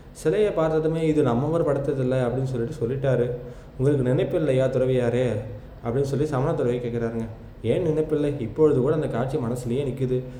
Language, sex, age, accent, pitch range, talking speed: Tamil, male, 20-39, native, 125-150 Hz, 150 wpm